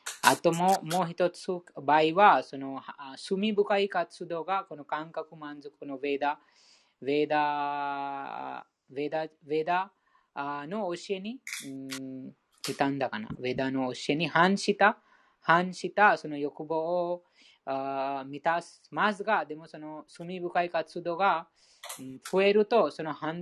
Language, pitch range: Japanese, 135-180 Hz